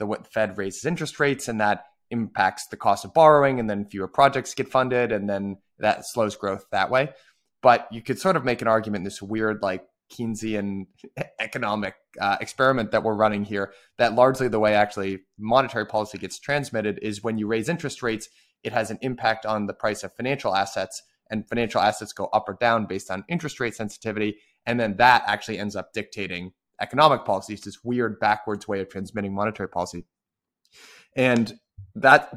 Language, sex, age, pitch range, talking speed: English, male, 20-39, 100-130 Hz, 185 wpm